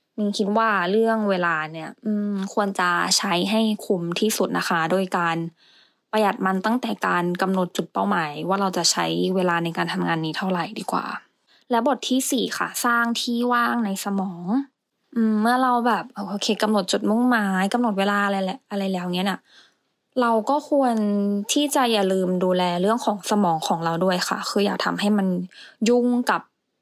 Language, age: English, 20-39